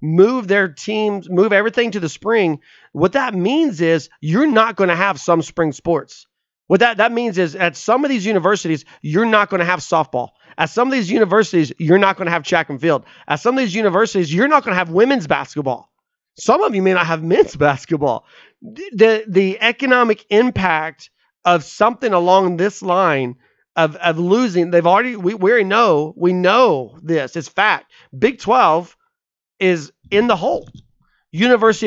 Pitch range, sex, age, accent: 160-215 Hz, male, 30-49, American